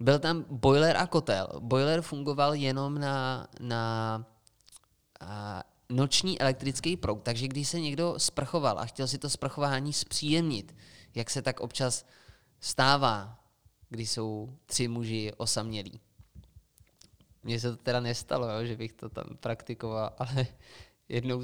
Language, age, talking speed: Czech, 20-39, 130 wpm